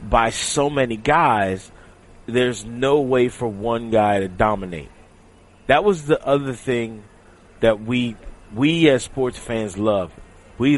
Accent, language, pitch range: American, English, 95-125 Hz